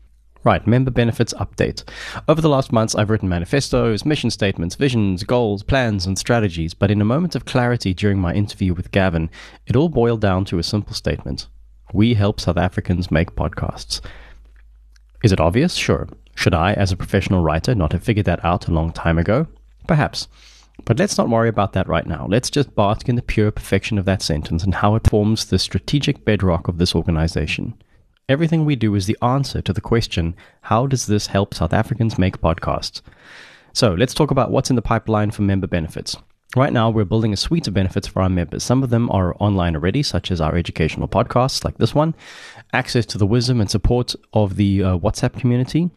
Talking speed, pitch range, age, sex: 200 wpm, 90-115 Hz, 30-49, male